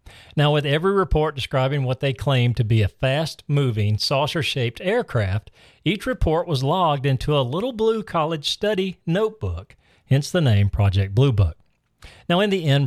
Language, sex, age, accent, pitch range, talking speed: English, male, 40-59, American, 115-165 Hz, 165 wpm